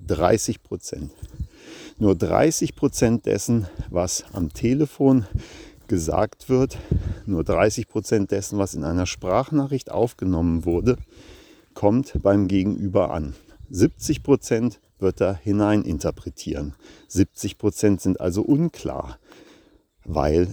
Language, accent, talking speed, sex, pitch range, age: German, German, 100 wpm, male, 90-115 Hz, 50-69